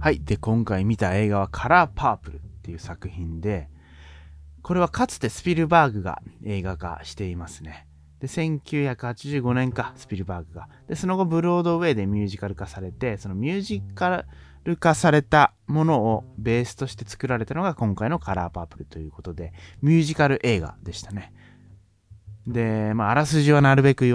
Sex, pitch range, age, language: male, 90-135 Hz, 30-49, Japanese